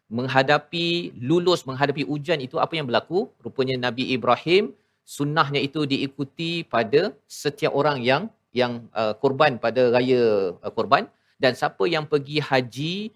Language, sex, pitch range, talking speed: Malayalam, male, 125-150 Hz, 135 wpm